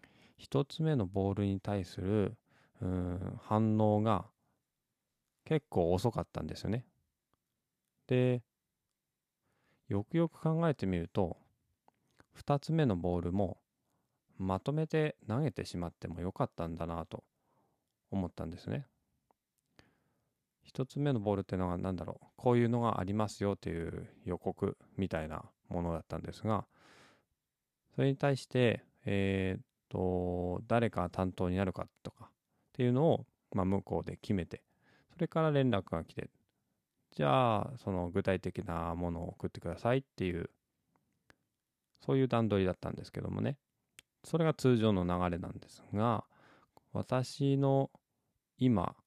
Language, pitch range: Japanese, 90-125 Hz